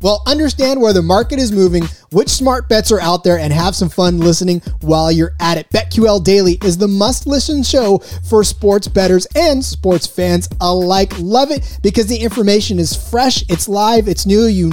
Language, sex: English, male